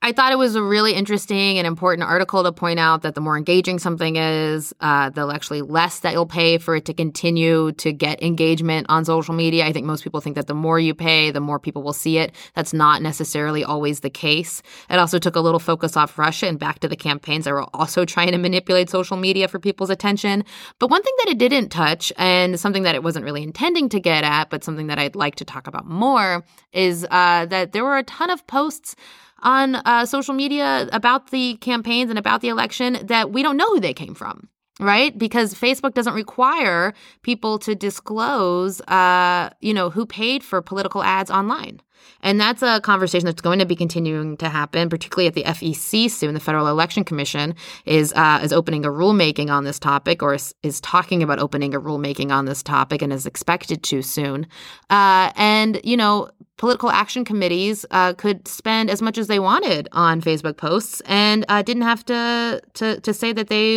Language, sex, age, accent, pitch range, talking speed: English, female, 20-39, American, 155-215 Hz, 215 wpm